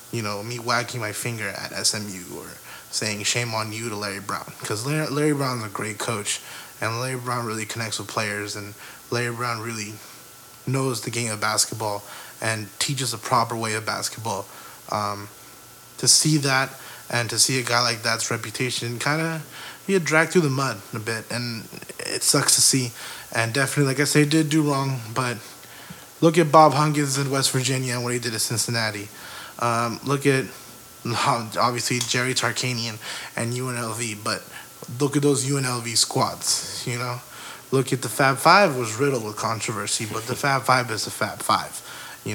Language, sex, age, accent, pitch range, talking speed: English, male, 20-39, American, 115-140 Hz, 185 wpm